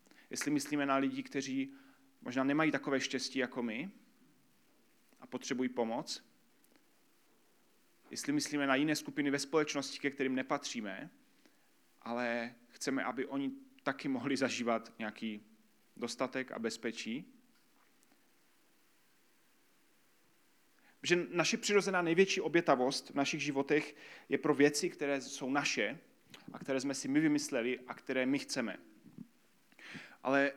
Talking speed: 120 wpm